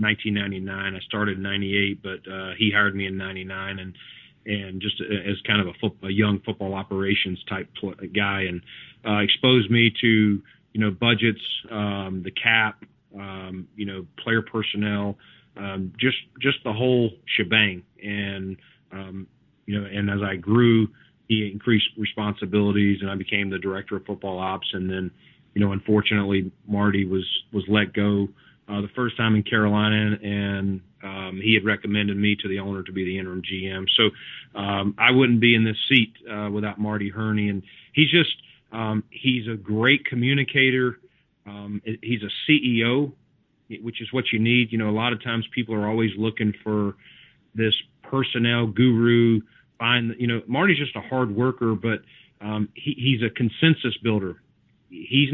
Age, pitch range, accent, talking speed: 30-49, 100-115 Hz, American, 170 wpm